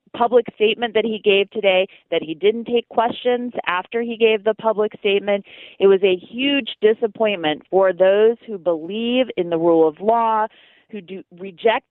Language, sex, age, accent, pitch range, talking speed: English, female, 30-49, American, 175-225 Hz, 170 wpm